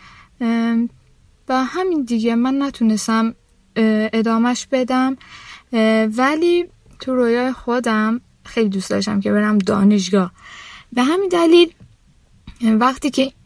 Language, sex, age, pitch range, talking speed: Persian, female, 10-29, 210-255 Hz, 100 wpm